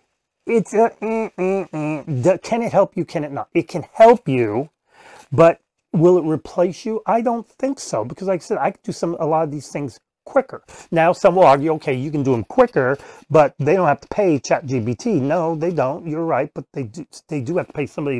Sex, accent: male, American